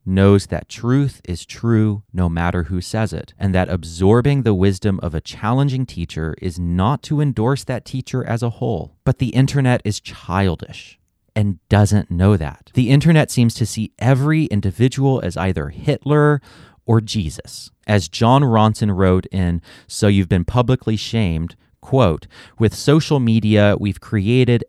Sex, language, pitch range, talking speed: male, English, 90-125 Hz, 160 wpm